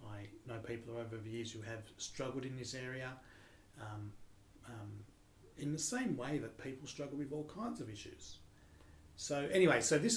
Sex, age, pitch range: male, 30-49, 110-135 Hz